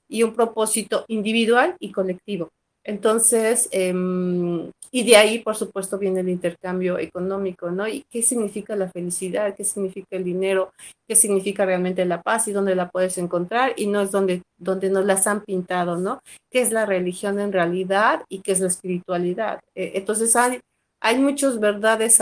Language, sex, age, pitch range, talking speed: Spanish, female, 40-59, 185-220 Hz, 175 wpm